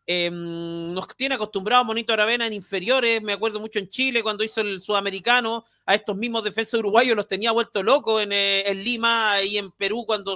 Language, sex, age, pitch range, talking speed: Spanish, male, 40-59, 195-235 Hz, 195 wpm